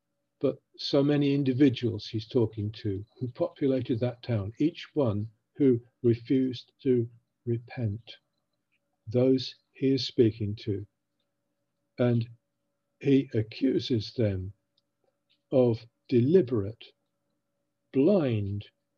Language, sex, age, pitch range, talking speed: English, male, 50-69, 110-135 Hz, 90 wpm